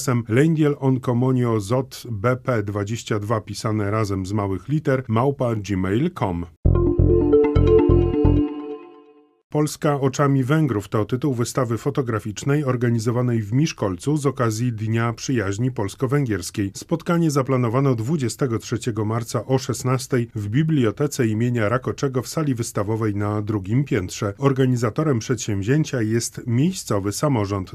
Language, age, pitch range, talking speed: Polish, 30-49, 110-140 Hz, 100 wpm